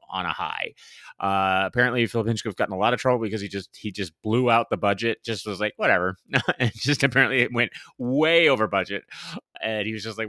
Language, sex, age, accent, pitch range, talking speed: English, male, 30-49, American, 95-125 Hz, 220 wpm